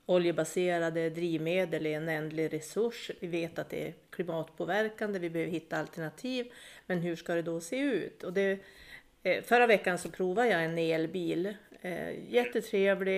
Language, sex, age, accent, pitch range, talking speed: Swedish, female, 40-59, native, 165-200 Hz, 150 wpm